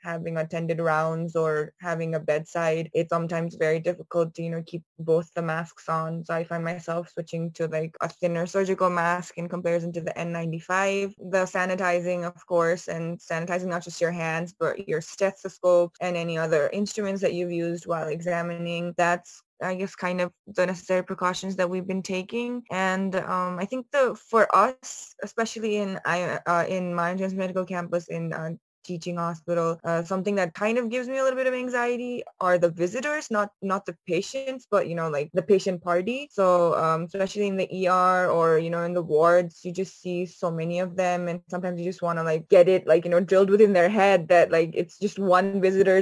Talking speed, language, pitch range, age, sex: 200 wpm, English, 170-190 Hz, 20-39, female